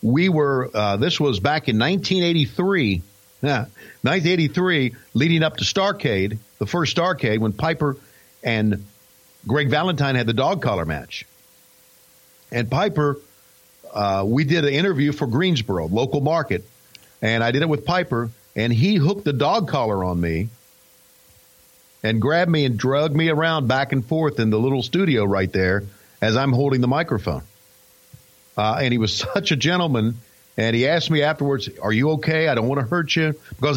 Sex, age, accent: male, 50-69, American